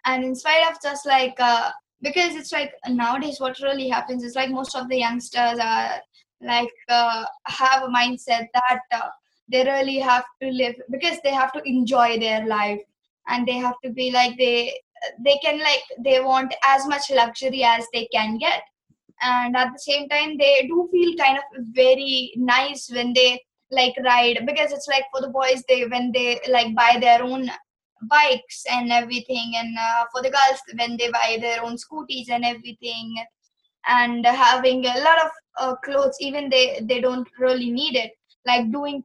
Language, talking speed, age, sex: English, 185 wpm, 20-39, female